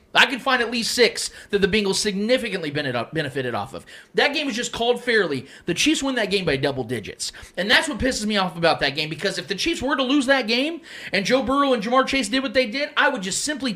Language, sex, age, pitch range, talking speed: English, male, 30-49, 225-315 Hz, 255 wpm